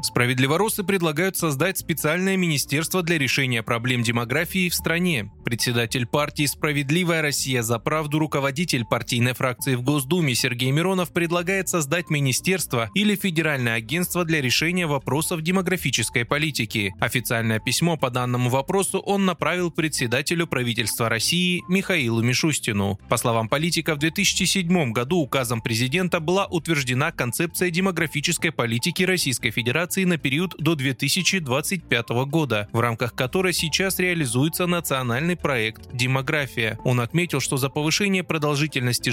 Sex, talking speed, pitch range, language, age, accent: male, 125 wpm, 125-175 Hz, Russian, 20-39, native